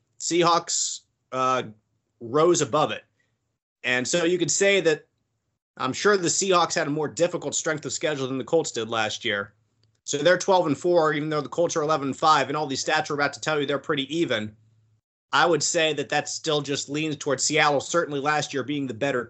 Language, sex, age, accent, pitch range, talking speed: English, male, 30-49, American, 120-165 Hz, 210 wpm